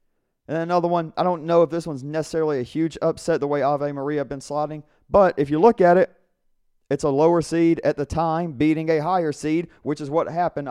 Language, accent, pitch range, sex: English, American, 115-145 Hz, male